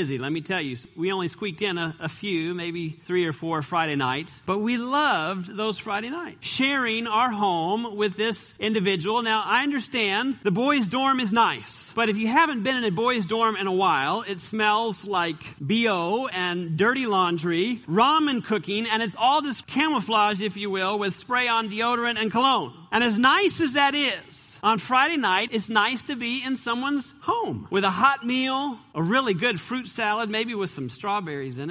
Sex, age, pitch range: male, 40-59, 165-240 Hz